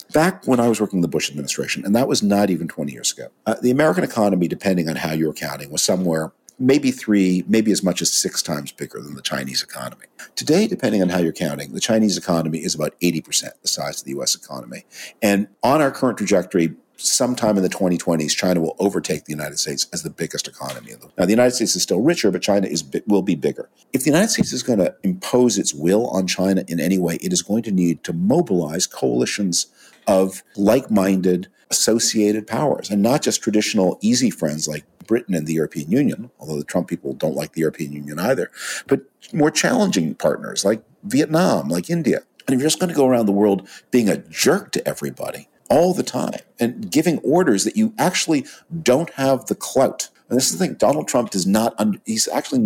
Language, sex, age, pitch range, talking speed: English, male, 50-69, 85-120 Hz, 215 wpm